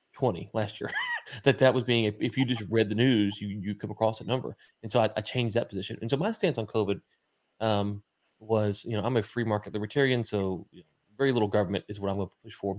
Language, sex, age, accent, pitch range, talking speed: English, male, 30-49, American, 105-130 Hz, 250 wpm